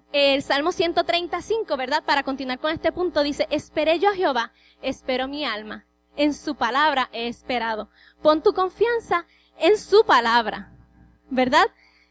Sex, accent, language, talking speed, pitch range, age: female, American, English, 145 wpm, 250-345 Hz, 20-39